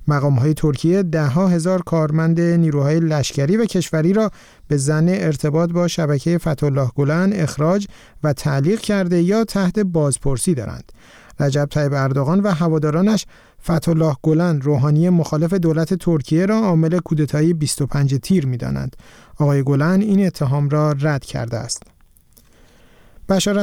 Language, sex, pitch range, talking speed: Persian, male, 145-185 Hz, 135 wpm